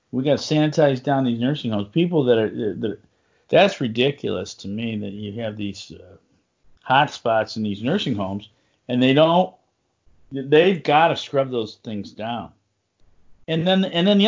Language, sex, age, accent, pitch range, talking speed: English, male, 50-69, American, 120-175 Hz, 175 wpm